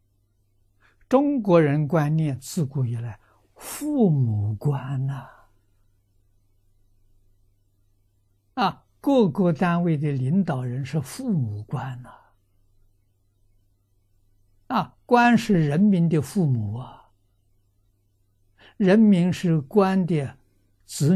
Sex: male